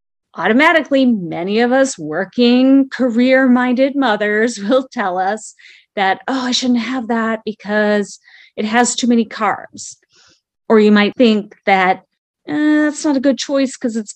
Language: English